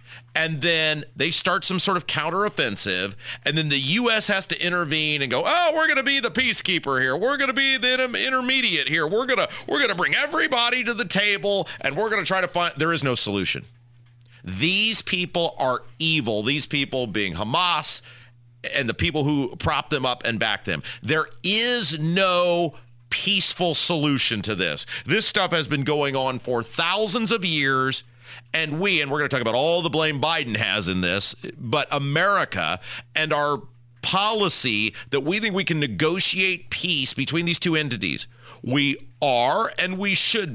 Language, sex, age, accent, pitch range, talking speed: English, male, 40-59, American, 120-185 Hz, 180 wpm